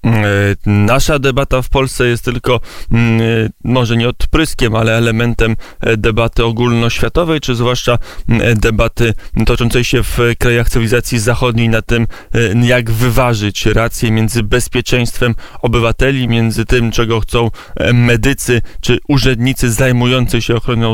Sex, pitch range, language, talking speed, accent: male, 110-125 Hz, Polish, 115 wpm, native